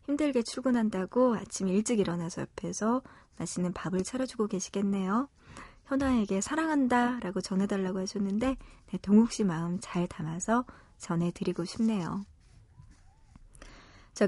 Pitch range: 180-240 Hz